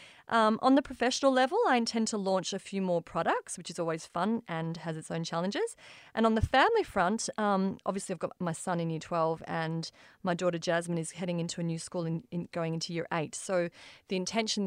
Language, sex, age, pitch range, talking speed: English, female, 30-49, 170-215 Hz, 230 wpm